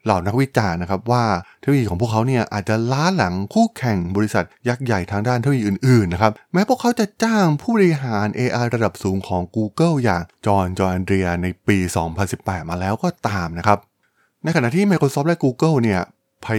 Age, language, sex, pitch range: 20-39, Thai, male, 95-125 Hz